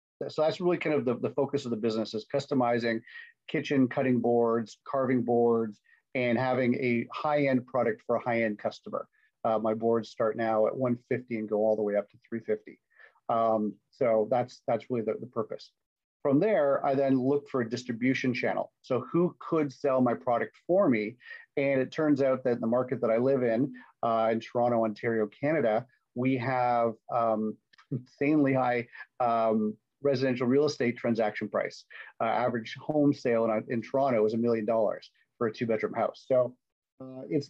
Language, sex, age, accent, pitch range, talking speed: English, male, 40-59, American, 115-130 Hz, 190 wpm